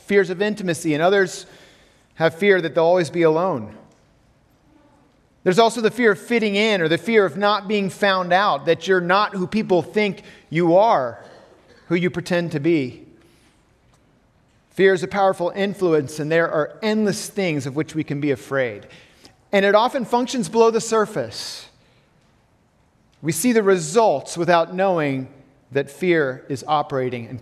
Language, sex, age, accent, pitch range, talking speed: English, male, 40-59, American, 155-200 Hz, 160 wpm